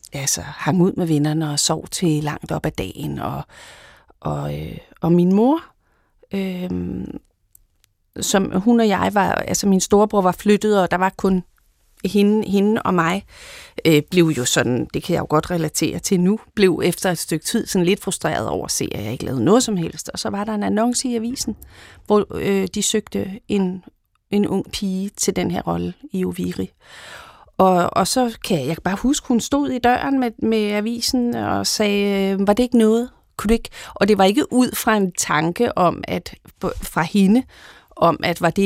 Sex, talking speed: female, 195 wpm